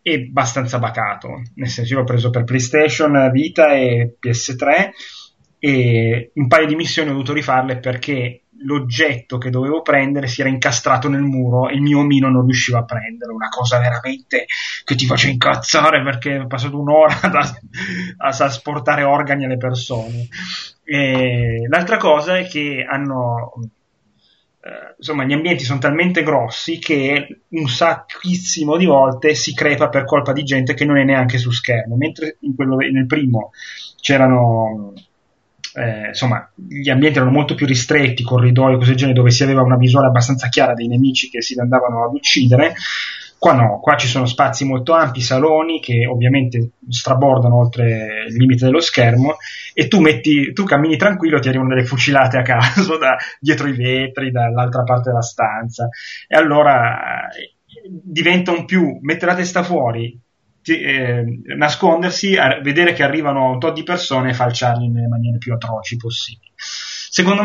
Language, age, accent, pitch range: Italian, 30-49, native, 125-150 Hz